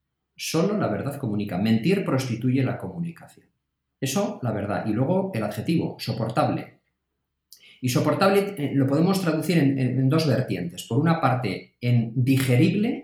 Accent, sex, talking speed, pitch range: Spanish, male, 140 wpm, 115-150 Hz